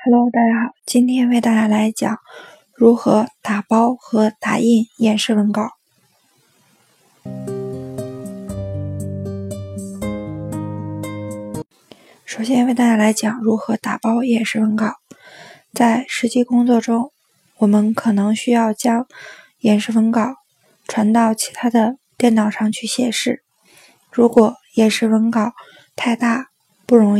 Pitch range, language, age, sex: 215-240 Hz, Chinese, 20-39, female